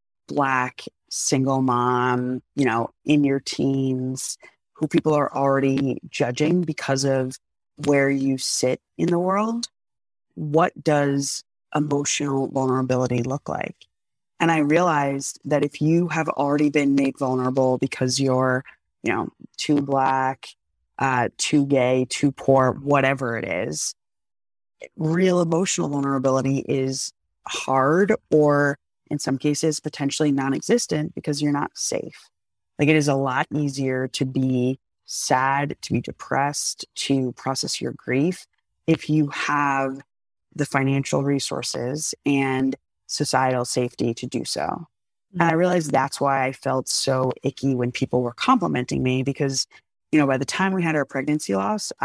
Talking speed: 140 wpm